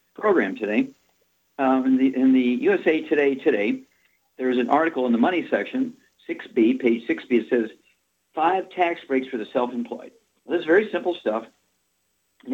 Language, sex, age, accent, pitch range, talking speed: English, male, 50-69, American, 125-185 Hz, 180 wpm